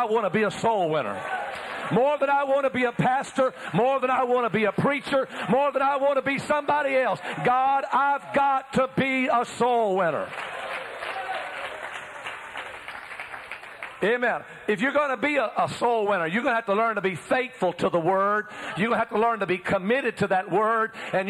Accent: American